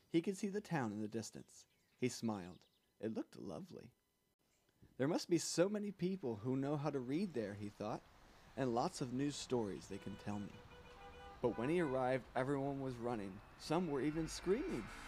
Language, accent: English, American